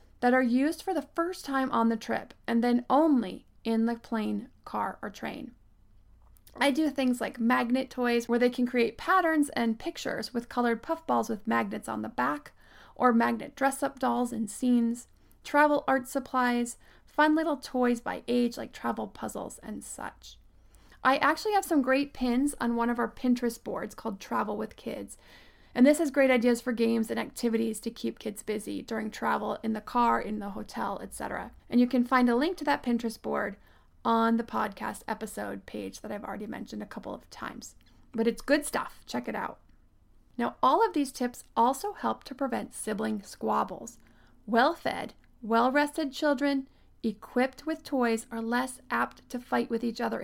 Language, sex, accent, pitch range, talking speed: English, female, American, 230-275 Hz, 180 wpm